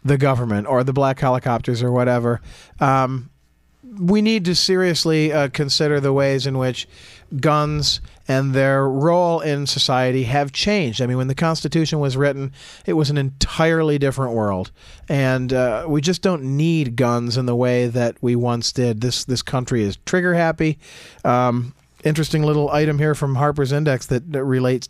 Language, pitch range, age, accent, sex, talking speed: English, 125-160 Hz, 40-59, American, male, 170 wpm